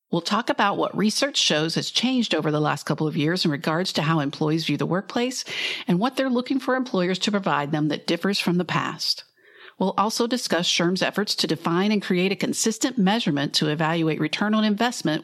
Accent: American